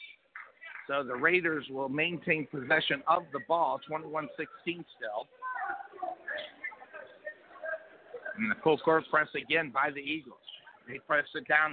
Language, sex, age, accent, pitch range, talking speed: English, male, 50-69, American, 170-260 Hz, 125 wpm